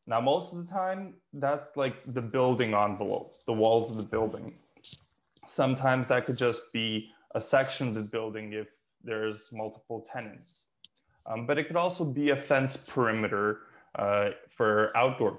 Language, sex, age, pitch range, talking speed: English, male, 20-39, 110-145 Hz, 160 wpm